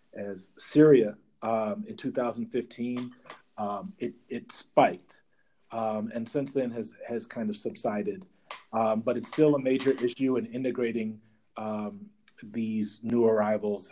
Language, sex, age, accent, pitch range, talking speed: English, male, 30-49, American, 110-140 Hz, 140 wpm